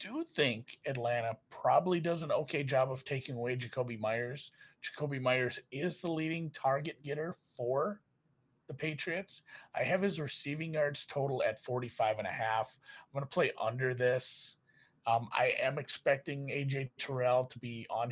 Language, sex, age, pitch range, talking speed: English, male, 30-49, 120-155 Hz, 165 wpm